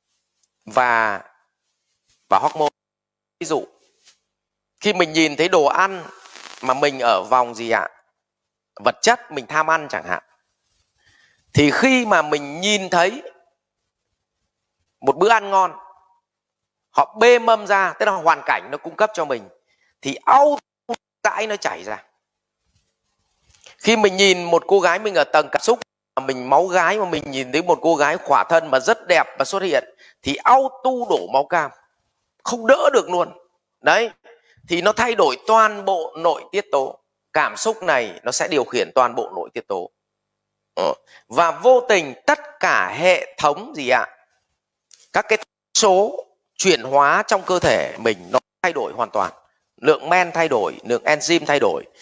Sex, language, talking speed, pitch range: male, Vietnamese, 170 wpm, 145-220 Hz